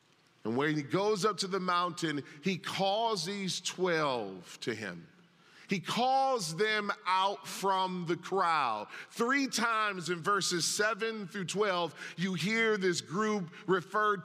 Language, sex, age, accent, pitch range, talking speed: English, male, 40-59, American, 175-225 Hz, 140 wpm